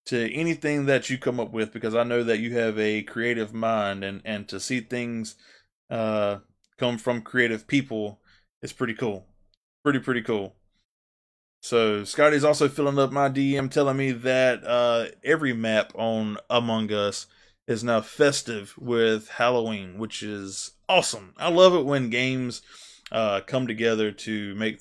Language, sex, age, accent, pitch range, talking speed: English, male, 20-39, American, 105-135 Hz, 160 wpm